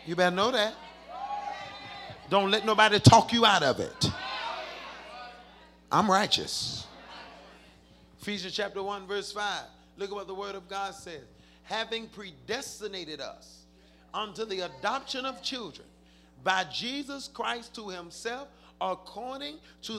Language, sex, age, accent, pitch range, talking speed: English, male, 40-59, American, 175-275 Hz, 125 wpm